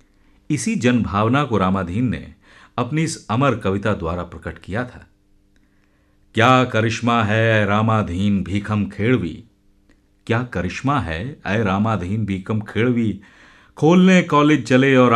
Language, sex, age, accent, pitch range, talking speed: Hindi, male, 50-69, native, 95-115 Hz, 125 wpm